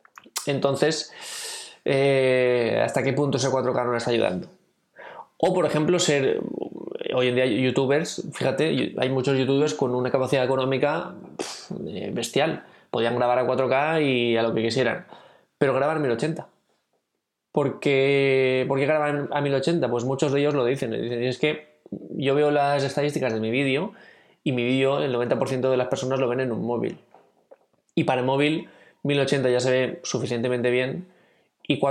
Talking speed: 165 wpm